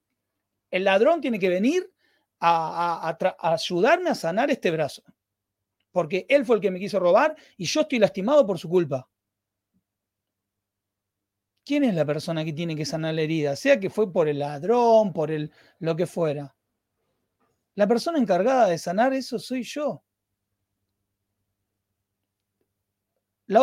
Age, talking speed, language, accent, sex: 40-59, 145 wpm, Spanish, Argentinian, male